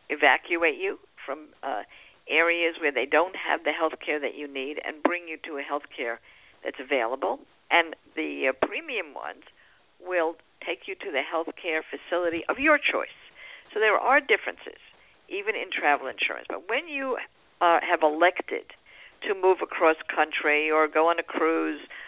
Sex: female